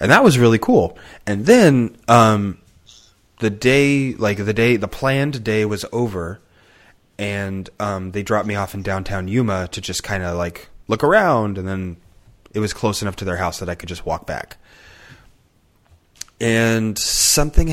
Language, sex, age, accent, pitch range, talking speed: English, male, 30-49, American, 90-115 Hz, 175 wpm